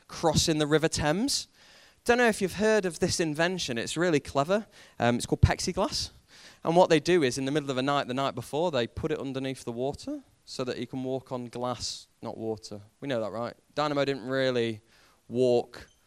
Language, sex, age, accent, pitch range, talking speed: English, male, 20-39, British, 125-200 Hz, 210 wpm